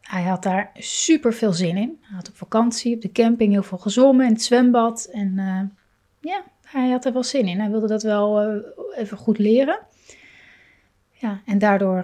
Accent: Dutch